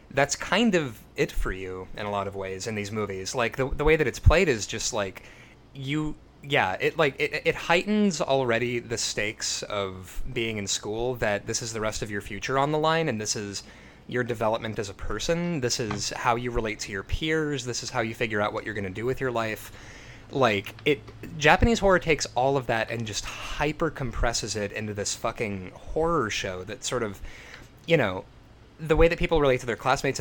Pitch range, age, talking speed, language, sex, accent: 110-165 Hz, 20-39, 215 wpm, English, male, American